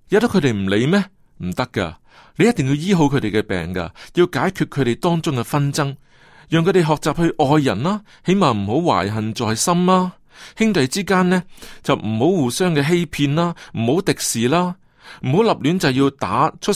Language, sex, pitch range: Chinese, male, 115-175 Hz